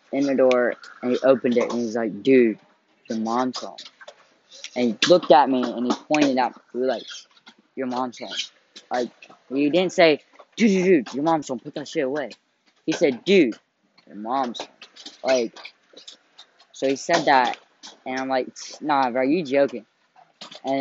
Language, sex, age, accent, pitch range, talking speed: English, female, 10-29, American, 125-150 Hz, 175 wpm